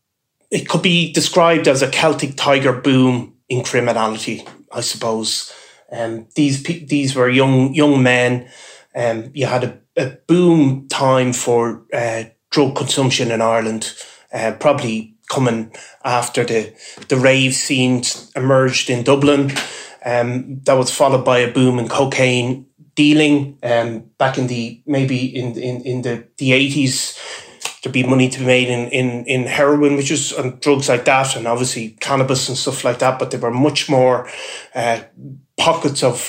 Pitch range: 120-140 Hz